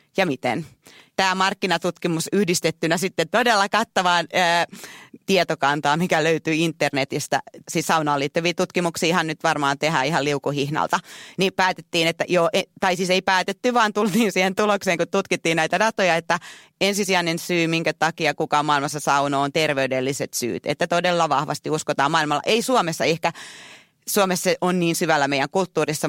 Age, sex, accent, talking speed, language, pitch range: 30-49, female, native, 150 wpm, Finnish, 155-185 Hz